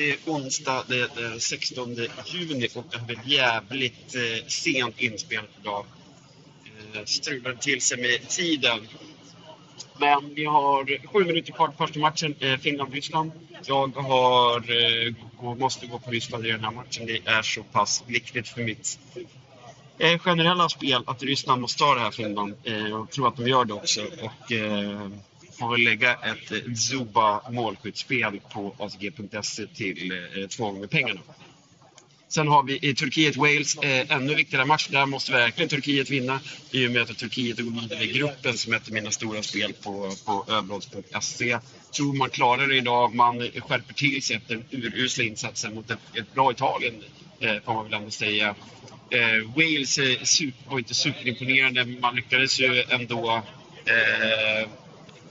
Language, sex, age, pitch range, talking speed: Swedish, male, 30-49, 115-145 Hz, 155 wpm